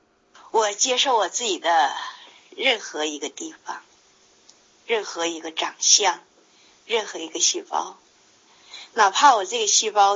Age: 50-69